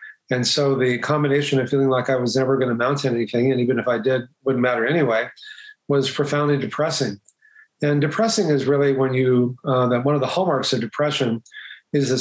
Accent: American